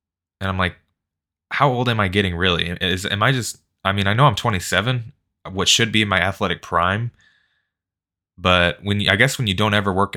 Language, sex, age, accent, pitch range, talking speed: English, male, 20-39, American, 85-105 Hz, 205 wpm